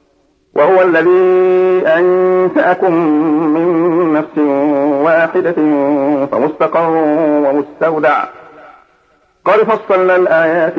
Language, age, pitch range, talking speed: Arabic, 50-69, 150-185 Hz, 60 wpm